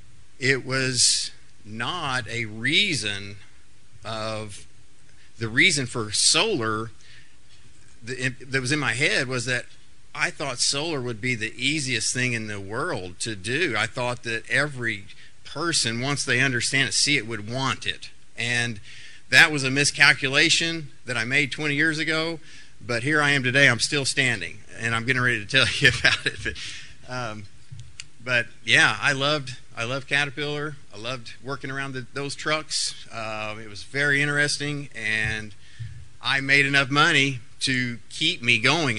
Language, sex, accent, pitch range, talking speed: English, male, American, 110-140 Hz, 155 wpm